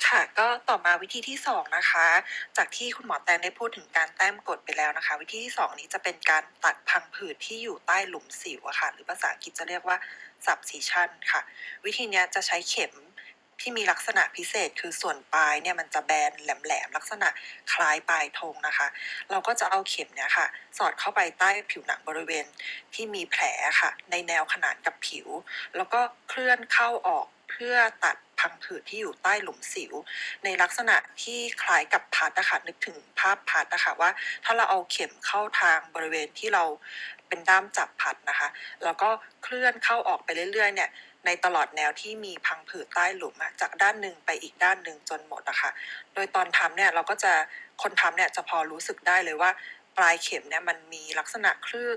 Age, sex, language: 20-39, female, Thai